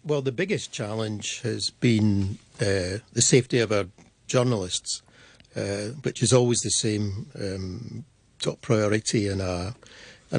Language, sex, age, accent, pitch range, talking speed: English, male, 60-79, British, 105-125 Hz, 135 wpm